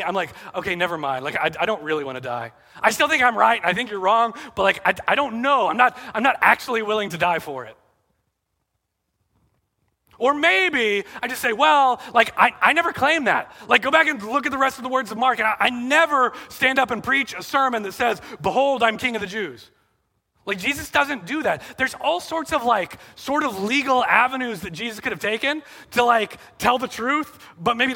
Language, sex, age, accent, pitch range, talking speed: English, male, 30-49, American, 200-275 Hz, 230 wpm